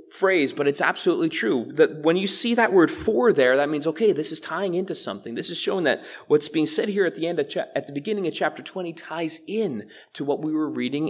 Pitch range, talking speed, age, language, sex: 145-220 Hz, 245 wpm, 30-49, English, male